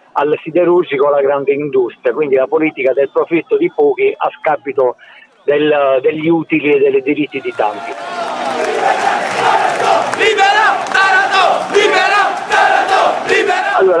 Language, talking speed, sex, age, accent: Italian, 100 wpm, male, 50-69, native